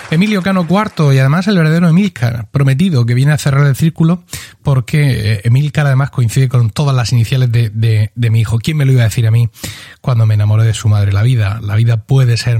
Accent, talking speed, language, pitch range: Spanish, 225 wpm, Spanish, 120-160 Hz